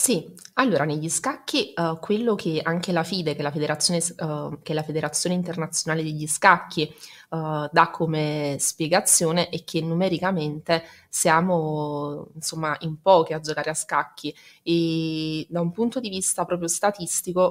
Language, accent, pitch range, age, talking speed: Italian, native, 155-170 Hz, 20-39, 145 wpm